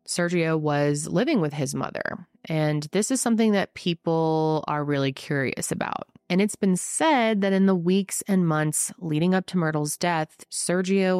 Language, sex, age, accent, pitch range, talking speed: English, female, 20-39, American, 145-185 Hz, 170 wpm